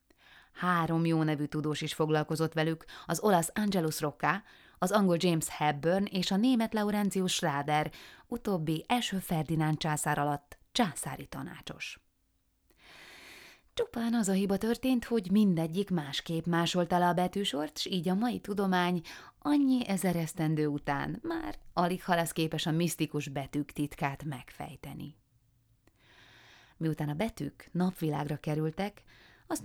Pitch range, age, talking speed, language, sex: 150-195 Hz, 20-39, 125 wpm, Hungarian, female